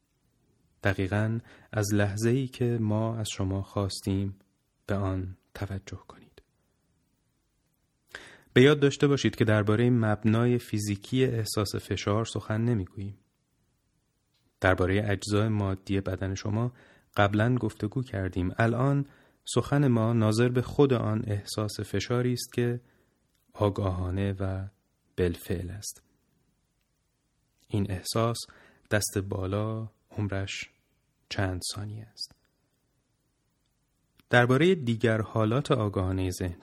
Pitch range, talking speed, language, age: 100-125 Hz, 100 wpm, Persian, 30-49